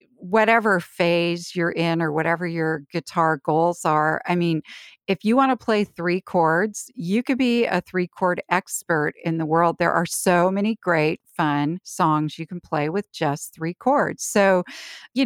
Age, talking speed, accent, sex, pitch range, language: 40-59, 175 wpm, American, female, 165-205 Hz, English